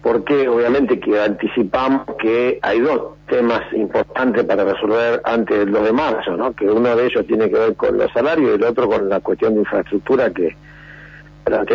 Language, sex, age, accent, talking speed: Spanish, male, 50-69, Argentinian, 190 wpm